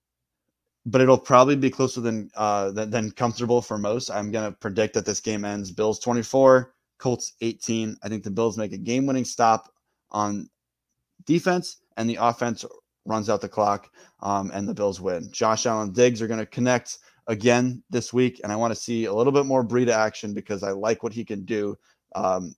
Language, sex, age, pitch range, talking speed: English, male, 20-39, 105-120 Hz, 195 wpm